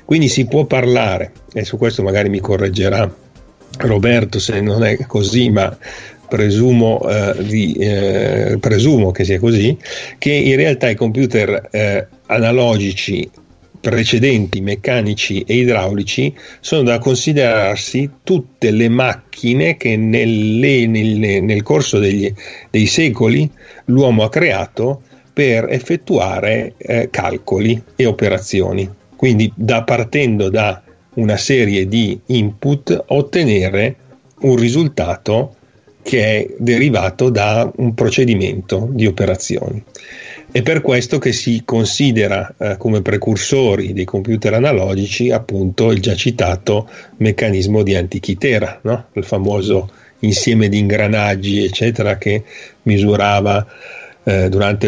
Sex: male